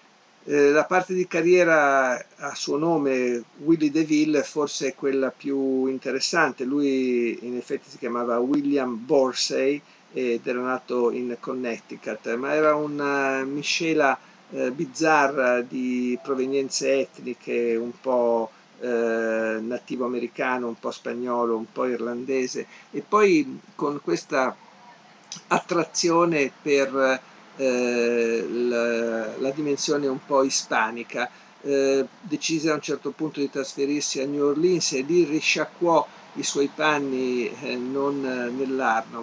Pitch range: 125-155 Hz